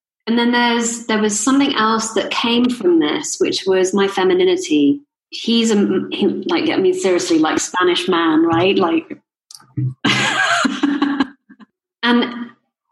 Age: 30-49